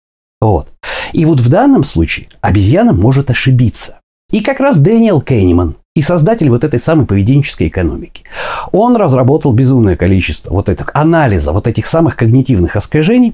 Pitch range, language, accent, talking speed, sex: 105-165 Hz, Russian, native, 150 wpm, male